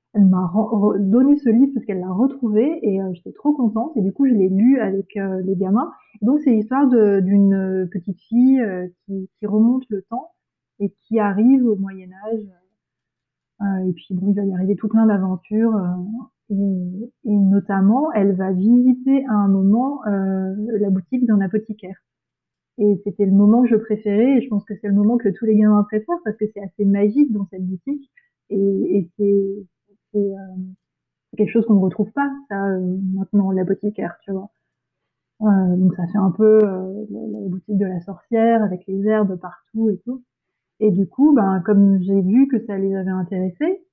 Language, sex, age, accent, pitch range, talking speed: French, female, 30-49, French, 195-225 Hz, 200 wpm